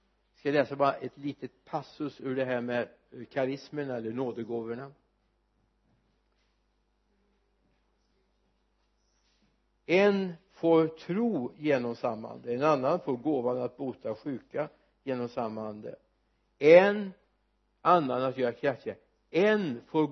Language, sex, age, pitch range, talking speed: Swedish, male, 60-79, 120-160 Hz, 105 wpm